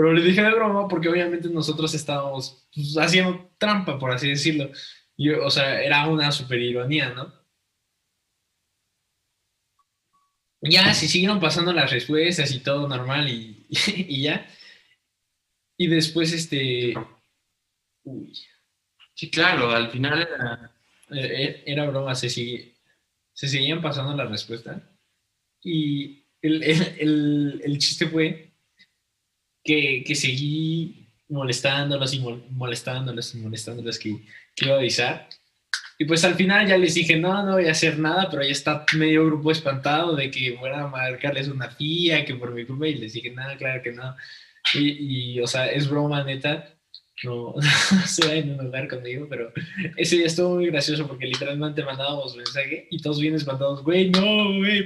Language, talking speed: Spanish, 160 wpm